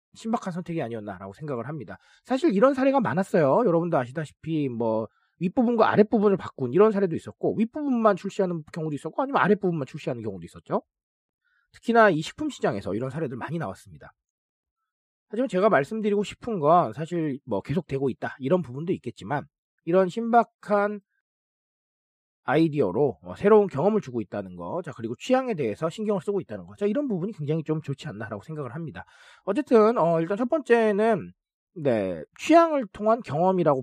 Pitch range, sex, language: 145-220 Hz, male, Korean